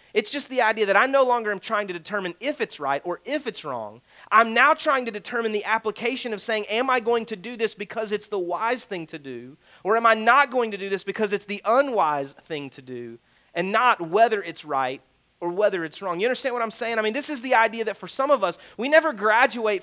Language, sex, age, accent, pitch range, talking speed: English, male, 30-49, American, 175-235 Hz, 255 wpm